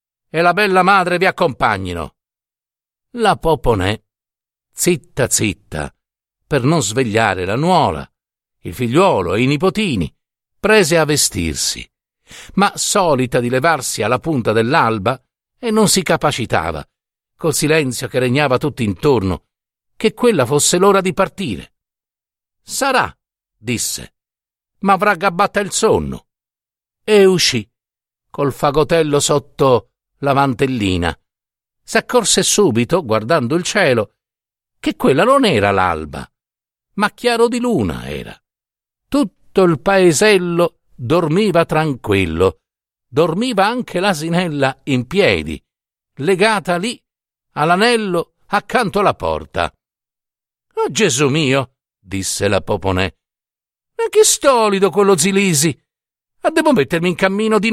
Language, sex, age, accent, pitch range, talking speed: Italian, male, 50-69, native, 120-200 Hz, 115 wpm